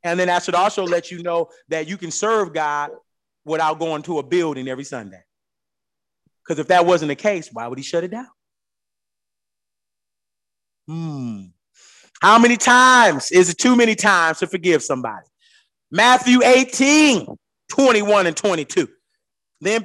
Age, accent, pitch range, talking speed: 30-49, American, 145-200 Hz, 150 wpm